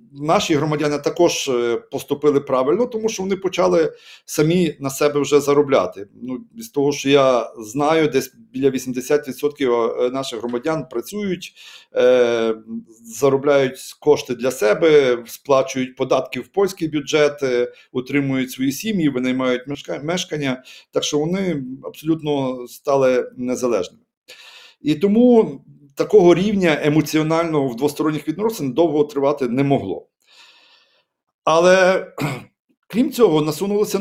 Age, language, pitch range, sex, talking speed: 40-59, Ukrainian, 125-165 Hz, male, 110 wpm